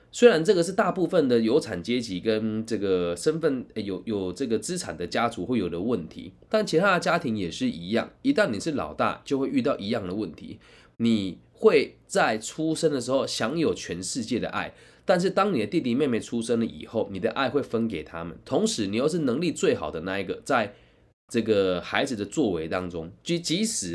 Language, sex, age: Chinese, male, 20-39